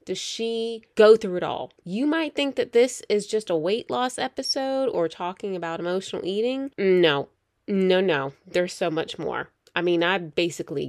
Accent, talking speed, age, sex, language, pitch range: American, 180 wpm, 20-39, female, English, 180-270 Hz